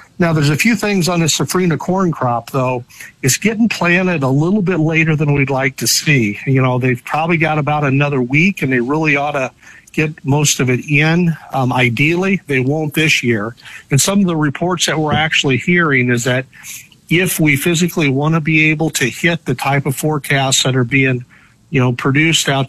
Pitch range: 130-160 Hz